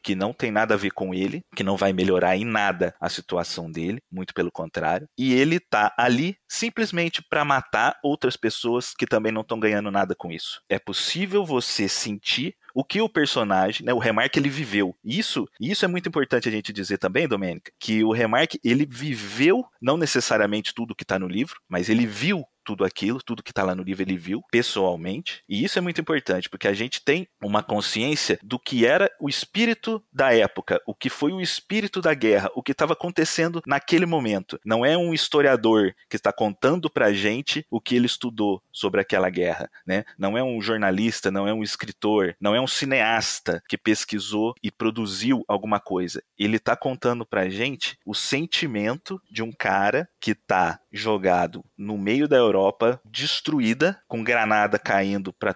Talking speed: 190 wpm